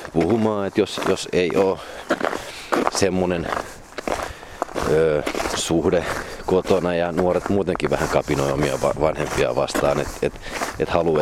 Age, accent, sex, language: 30-49, native, male, Finnish